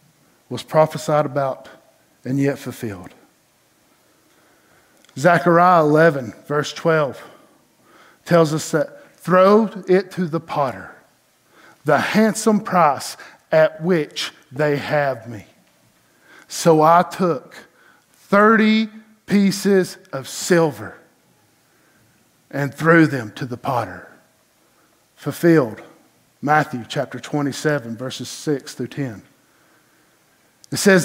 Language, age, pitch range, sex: English, 50-69, 145-180 Hz, male